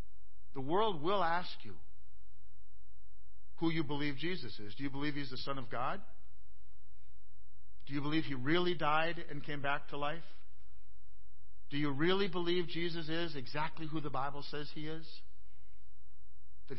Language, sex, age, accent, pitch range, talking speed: English, male, 50-69, American, 90-145 Hz, 155 wpm